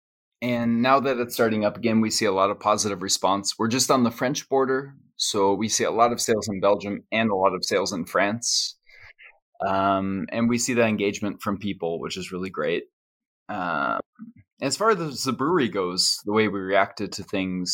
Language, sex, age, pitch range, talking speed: English, male, 20-39, 100-125 Hz, 205 wpm